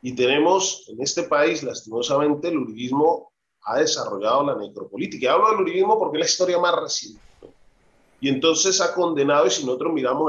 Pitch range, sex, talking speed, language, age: 135-180 Hz, male, 175 wpm, Spanish, 30-49